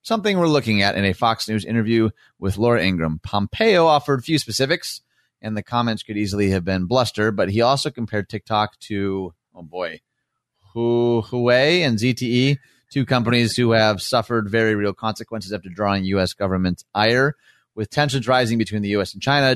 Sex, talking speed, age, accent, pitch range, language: male, 170 wpm, 30-49, American, 100-125 Hz, English